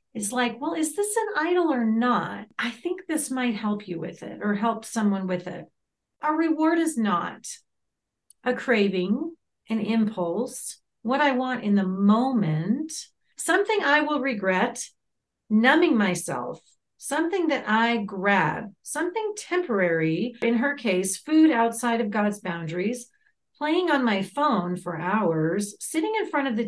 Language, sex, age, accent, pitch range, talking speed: English, female, 40-59, American, 205-290 Hz, 150 wpm